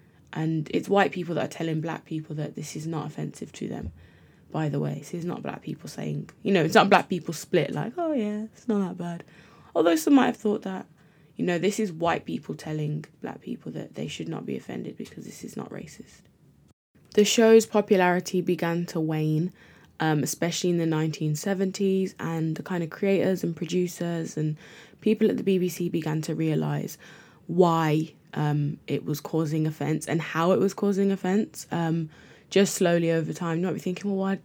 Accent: British